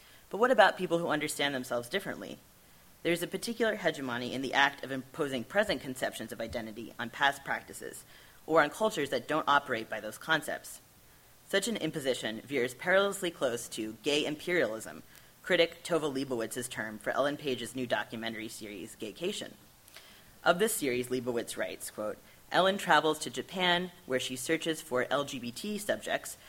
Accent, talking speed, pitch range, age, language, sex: American, 155 wpm, 120-165 Hz, 30-49, English, female